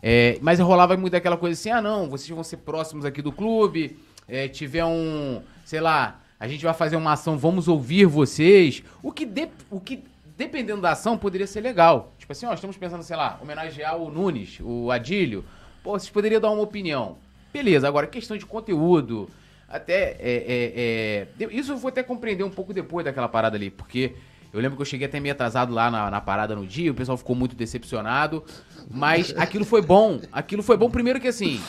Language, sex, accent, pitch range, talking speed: Portuguese, male, Brazilian, 125-195 Hz, 205 wpm